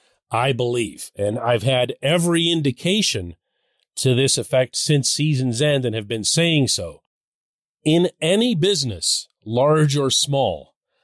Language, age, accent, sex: English, 40-59, American, male